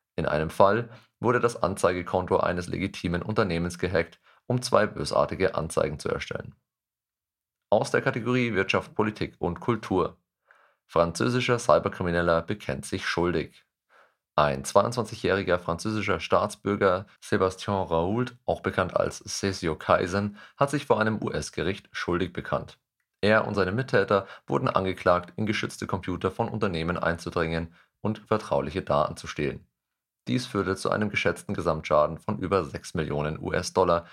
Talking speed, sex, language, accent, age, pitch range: 130 wpm, male, German, German, 40-59, 85-110 Hz